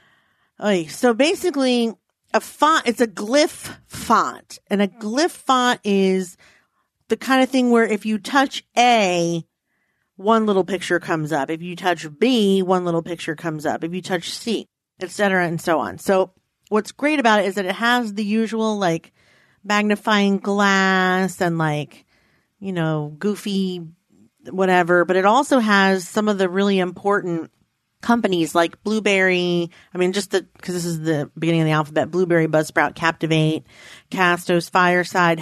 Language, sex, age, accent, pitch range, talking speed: English, female, 40-59, American, 175-225 Hz, 160 wpm